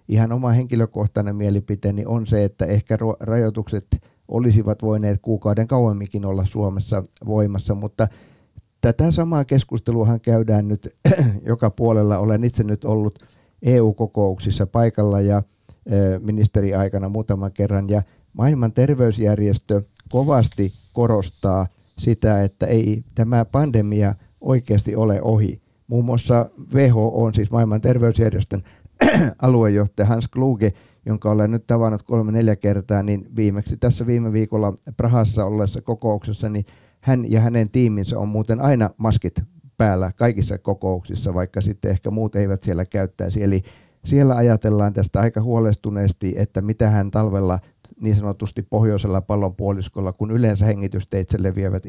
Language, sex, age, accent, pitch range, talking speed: Finnish, male, 50-69, native, 100-115 Hz, 125 wpm